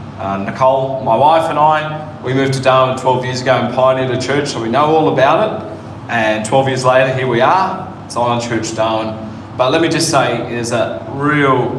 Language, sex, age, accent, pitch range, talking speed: English, male, 20-39, Australian, 110-135 Hz, 220 wpm